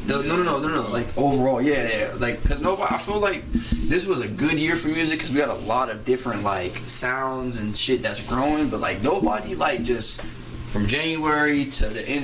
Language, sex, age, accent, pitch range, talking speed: English, male, 20-39, American, 115-140 Hz, 220 wpm